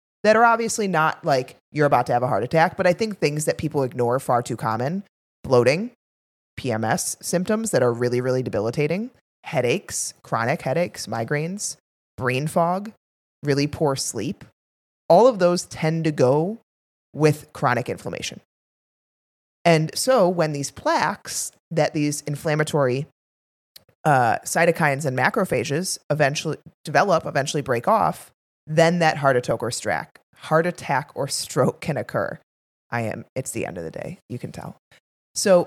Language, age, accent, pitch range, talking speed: English, 30-49, American, 135-185 Hz, 145 wpm